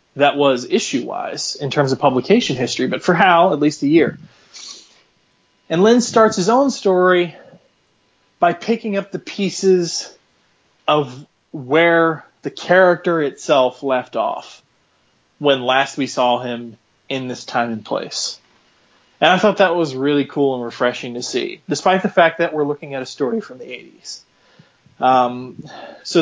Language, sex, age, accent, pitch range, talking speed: English, male, 30-49, American, 130-170 Hz, 155 wpm